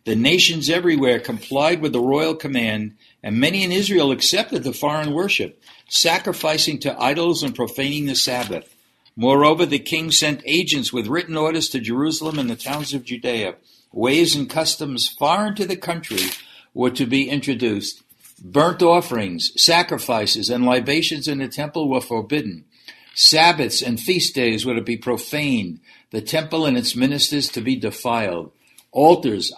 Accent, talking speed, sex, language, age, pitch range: American, 155 wpm, male, English, 60-79, 120-155 Hz